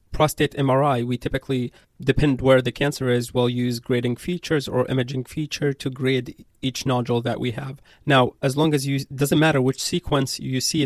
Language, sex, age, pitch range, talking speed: English, male, 30-49, 125-145 Hz, 190 wpm